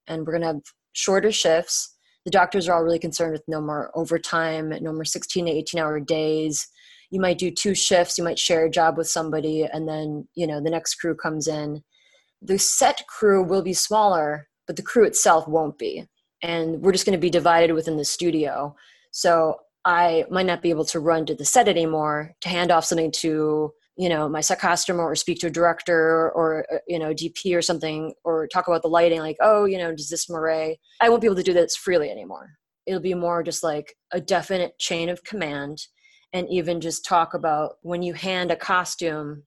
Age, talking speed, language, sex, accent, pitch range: 20-39, 215 wpm, English, female, American, 160-190 Hz